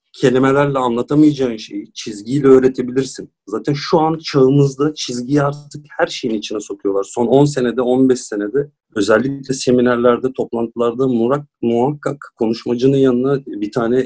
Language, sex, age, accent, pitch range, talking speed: Turkish, male, 40-59, native, 115-140 Hz, 125 wpm